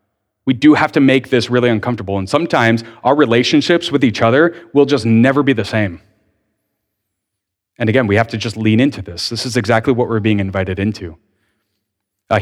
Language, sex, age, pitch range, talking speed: English, male, 30-49, 105-145 Hz, 190 wpm